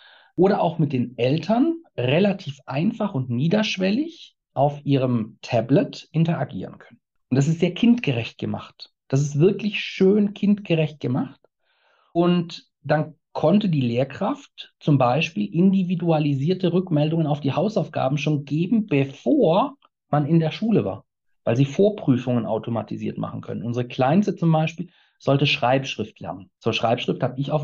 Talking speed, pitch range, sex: 140 wpm, 135-180 Hz, male